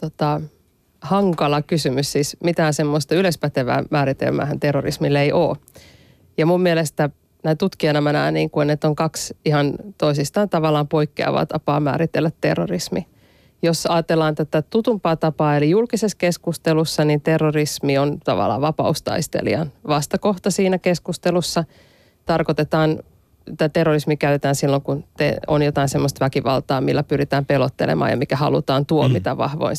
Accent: native